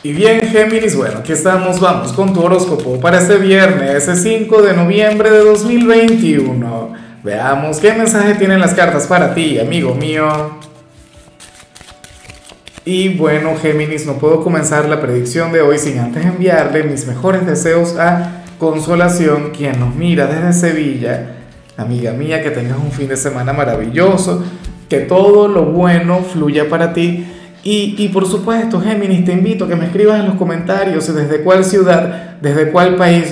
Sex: male